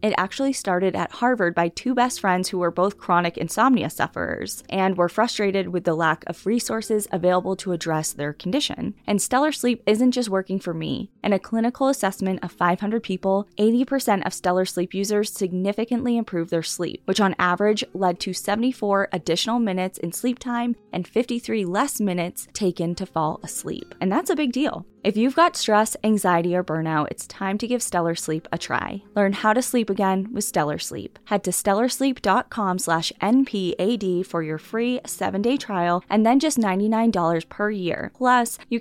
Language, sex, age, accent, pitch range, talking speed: English, female, 20-39, American, 180-230 Hz, 180 wpm